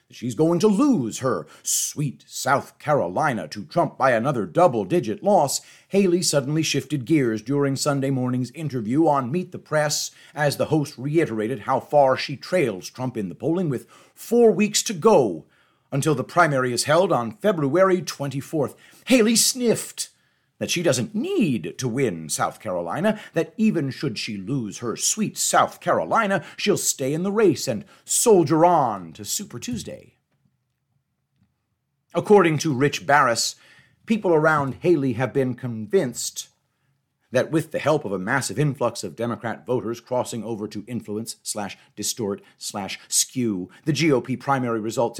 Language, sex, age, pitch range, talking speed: English, male, 40-59, 125-175 Hz, 145 wpm